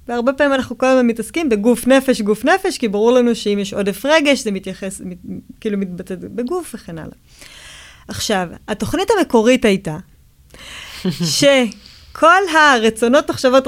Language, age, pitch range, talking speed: Hebrew, 20-39, 205-275 Hz, 140 wpm